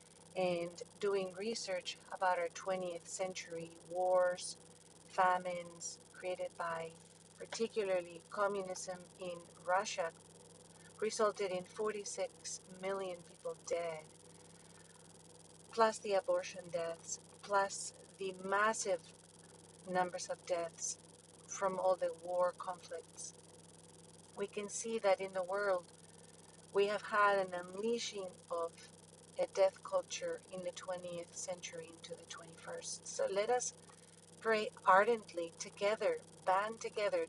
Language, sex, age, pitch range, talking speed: English, female, 40-59, 175-205 Hz, 110 wpm